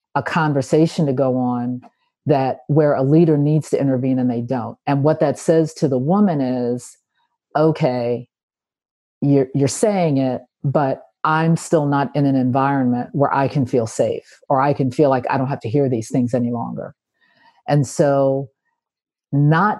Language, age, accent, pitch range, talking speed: English, 40-59, American, 130-160 Hz, 175 wpm